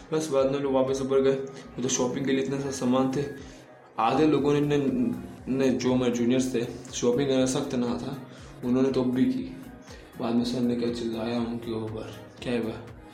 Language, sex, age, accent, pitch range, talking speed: Hindi, male, 20-39, native, 120-135 Hz, 205 wpm